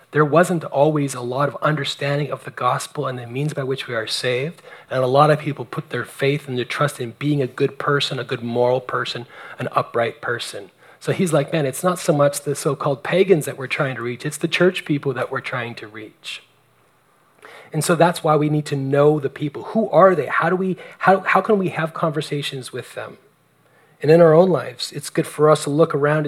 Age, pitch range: 30-49, 135-165 Hz